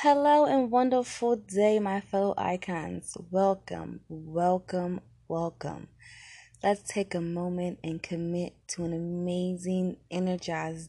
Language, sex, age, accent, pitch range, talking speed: English, female, 20-39, American, 165-200 Hz, 110 wpm